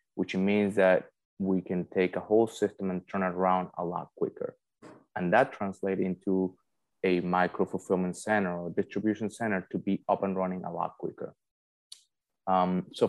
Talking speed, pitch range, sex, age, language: 170 wpm, 90-100 Hz, male, 20-39, English